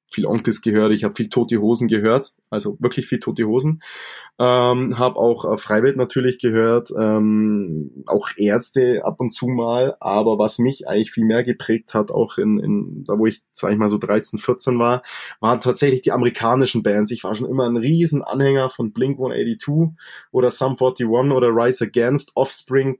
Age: 20-39